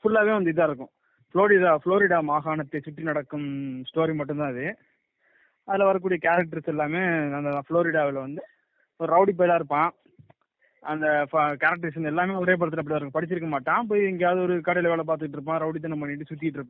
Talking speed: 155 wpm